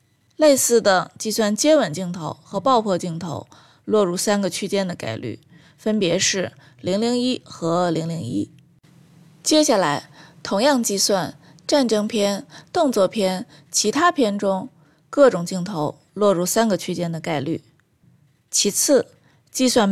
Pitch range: 165-225 Hz